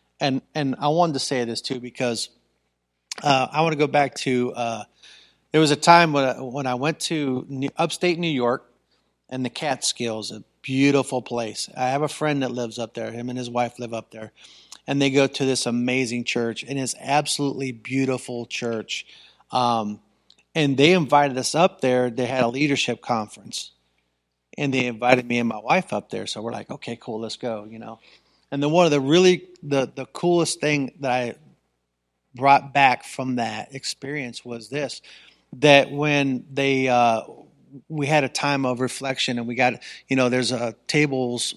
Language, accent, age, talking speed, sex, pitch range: English, American, 40-59, 190 wpm, male, 120-140 Hz